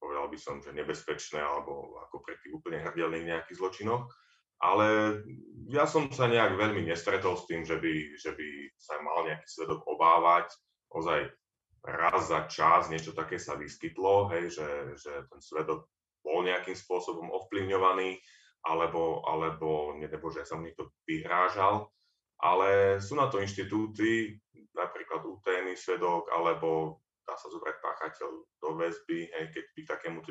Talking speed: 145 wpm